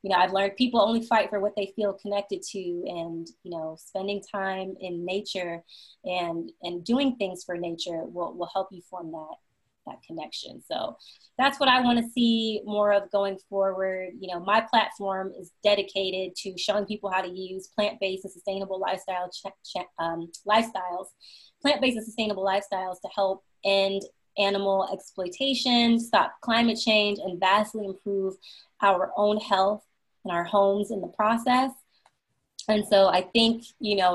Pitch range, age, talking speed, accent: 195-240 Hz, 20-39, 165 wpm, American